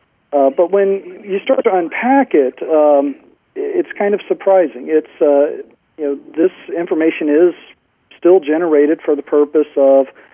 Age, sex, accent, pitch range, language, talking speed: 40-59, male, American, 130-155 Hz, English, 150 wpm